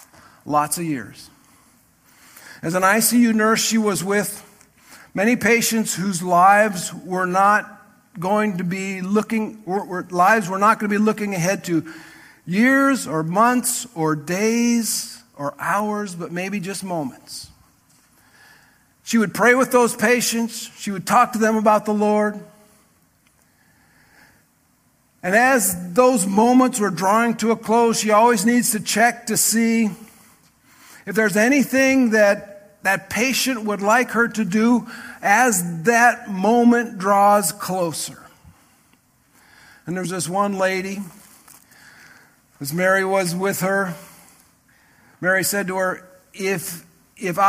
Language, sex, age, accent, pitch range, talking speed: English, male, 50-69, American, 190-235 Hz, 130 wpm